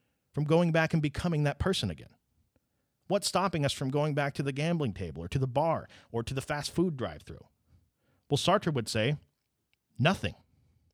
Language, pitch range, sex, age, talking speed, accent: English, 110-145 Hz, male, 40-59, 180 wpm, American